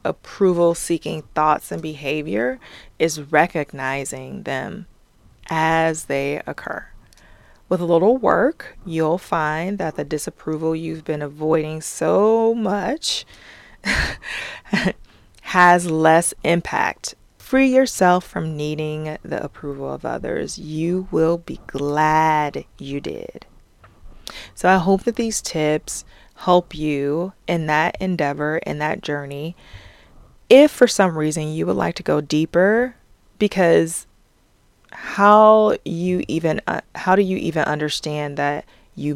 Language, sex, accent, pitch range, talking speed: English, female, American, 150-180 Hz, 120 wpm